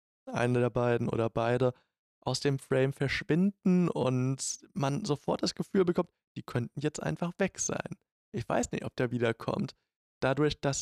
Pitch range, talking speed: 120-145 Hz, 160 wpm